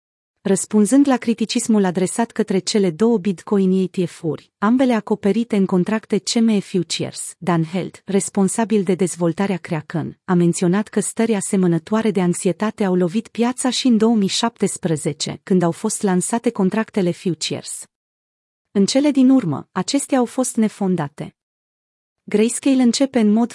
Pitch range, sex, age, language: 180-220 Hz, female, 30-49, Romanian